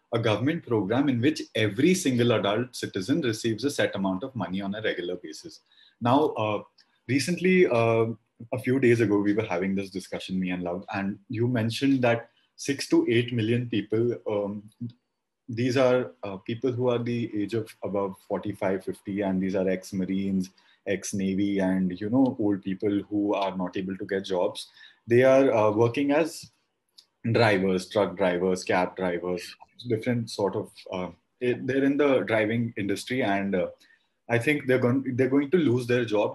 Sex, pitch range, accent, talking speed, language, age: male, 100-130 Hz, Indian, 175 wpm, English, 30-49